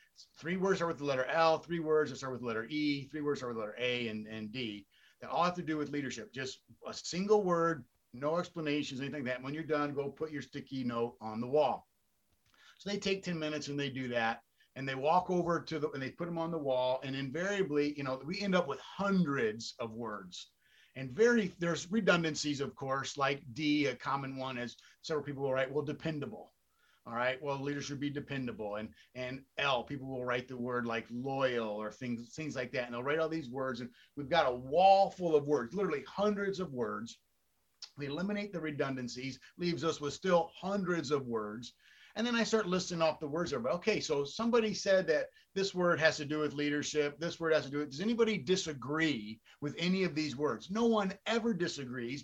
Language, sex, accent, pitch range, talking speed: English, male, American, 130-175 Hz, 220 wpm